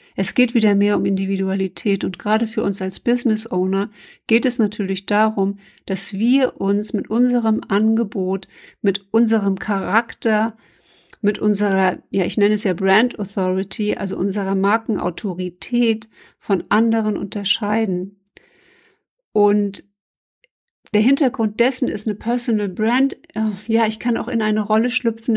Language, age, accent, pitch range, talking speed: German, 60-79, German, 200-230 Hz, 135 wpm